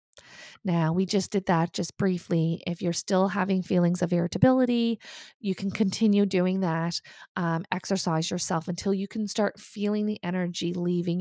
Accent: American